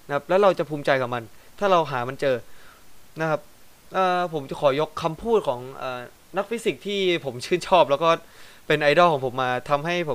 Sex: male